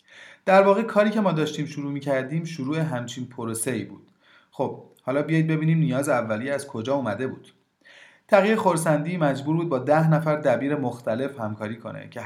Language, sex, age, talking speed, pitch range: Persian, male, 30-49, 170 wpm, 120-155 Hz